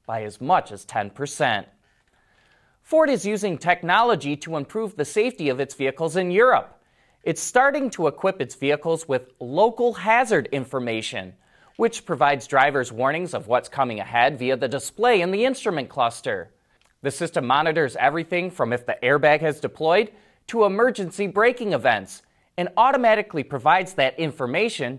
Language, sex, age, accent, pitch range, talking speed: English, male, 30-49, American, 130-210 Hz, 150 wpm